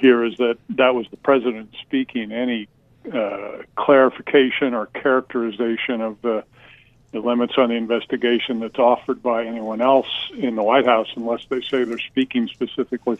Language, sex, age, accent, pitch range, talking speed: English, male, 50-69, American, 115-130 Hz, 160 wpm